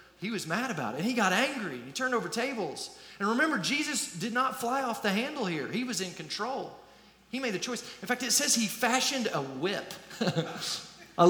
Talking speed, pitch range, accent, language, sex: 210 wpm, 160-225 Hz, American, English, male